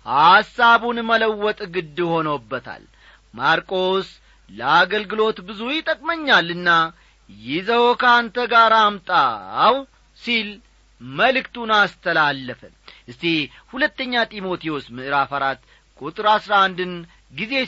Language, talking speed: Amharic, 80 wpm